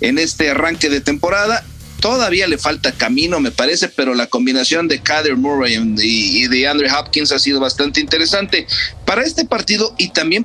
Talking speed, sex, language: 170 wpm, male, English